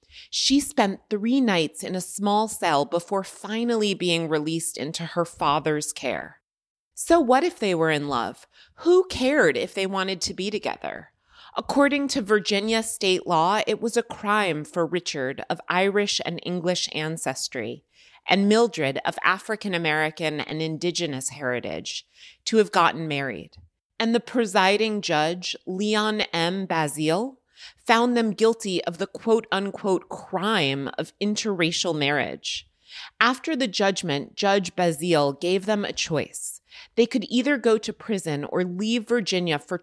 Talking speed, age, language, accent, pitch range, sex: 140 wpm, 30-49, English, American, 165-220 Hz, female